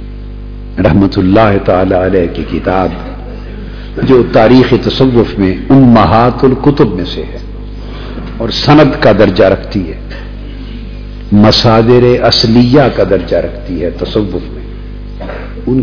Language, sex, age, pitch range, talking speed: Urdu, male, 50-69, 100-120 Hz, 120 wpm